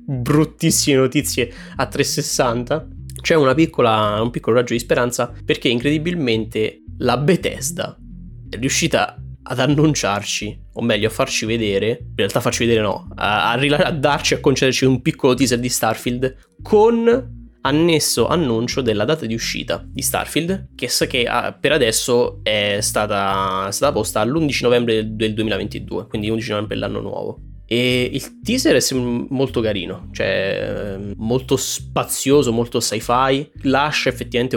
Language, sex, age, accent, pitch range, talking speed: Italian, male, 20-39, native, 100-125 Hz, 145 wpm